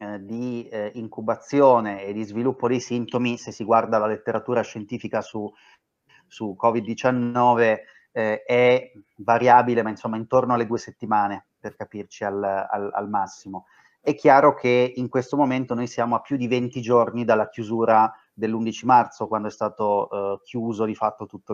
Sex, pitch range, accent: male, 110-130 Hz, native